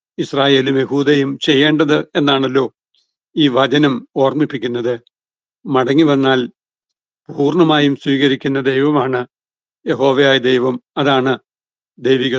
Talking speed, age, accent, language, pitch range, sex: 75 wpm, 60-79, native, Malayalam, 130-150 Hz, male